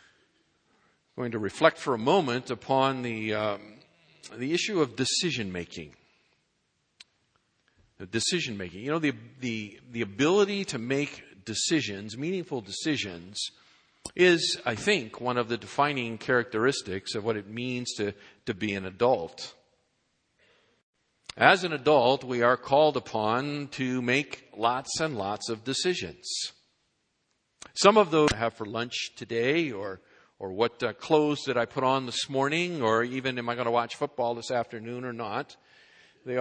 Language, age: English, 50-69